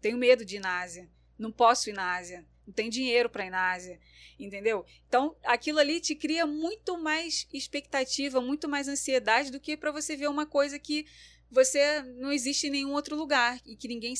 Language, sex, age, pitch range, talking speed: Portuguese, female, 20-39, 230-285 Hz, 205 wpm